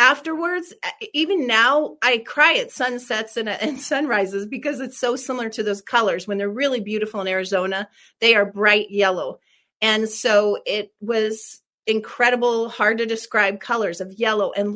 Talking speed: 160 wpm